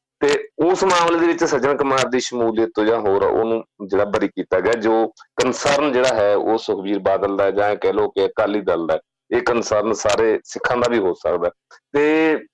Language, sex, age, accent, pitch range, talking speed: English, male, 40-59, Indian, 110-155 Hz, 200 wpm